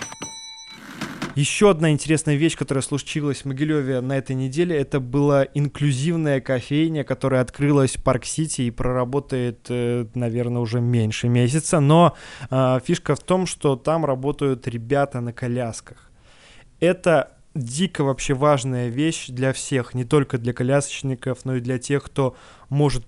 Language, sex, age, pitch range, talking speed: Russian, male, 20-39, 130-145 Hz, 140 wpm